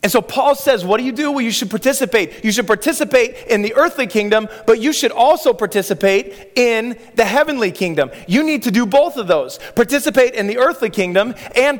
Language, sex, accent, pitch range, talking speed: English, male, American, 195-260 Hz, 210 wpm